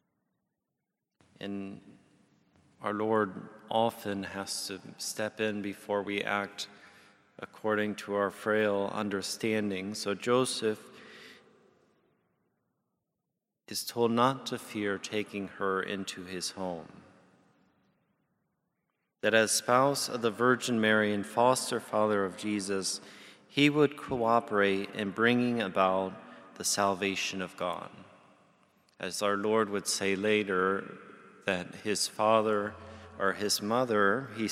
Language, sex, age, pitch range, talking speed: English, male, 30-49, 95-110 Hz, 110 wpm